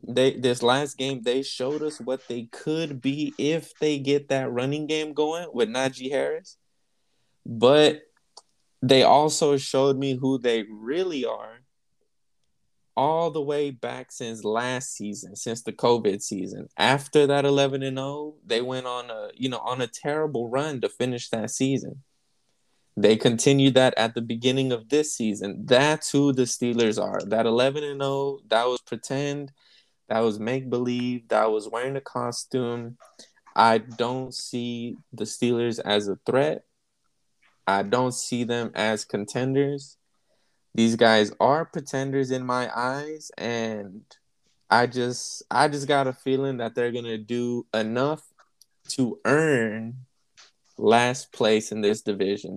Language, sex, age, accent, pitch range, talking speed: English, male, 20-39, American, 115-140 Hz, 145 wpm